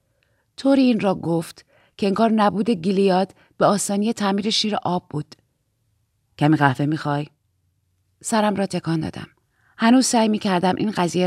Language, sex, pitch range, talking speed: Persian, female, 140-200 Hz, 140 wpm